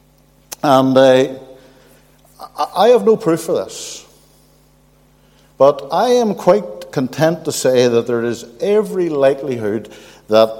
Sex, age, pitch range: male, 60-79, 130-195 Hz